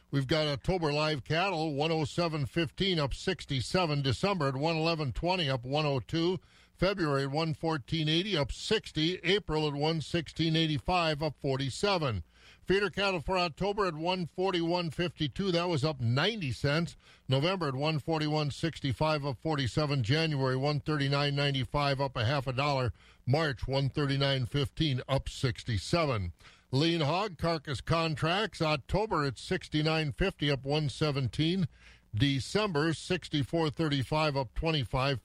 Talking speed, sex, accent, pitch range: 105 wpm, male, American, 135-165 Hz